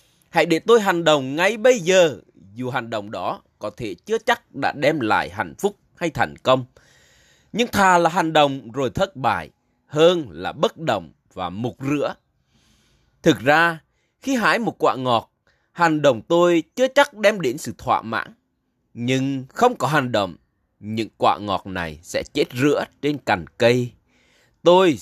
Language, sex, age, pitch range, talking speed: Vietnamese, male, 20-39, 120-180 Hz, 175 wpm